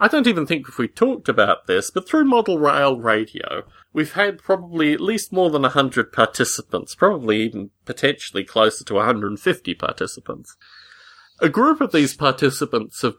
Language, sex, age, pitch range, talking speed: English, male, 30-49, 105-145 Hz, 165 wpm